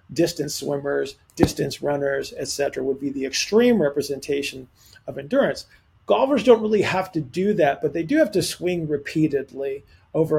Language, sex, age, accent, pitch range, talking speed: English, male, 40-59, American, 140-160 Hz, 160 wpm